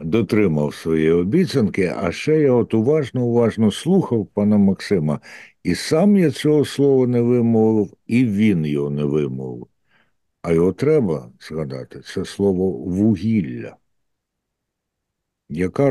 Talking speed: 115 wpm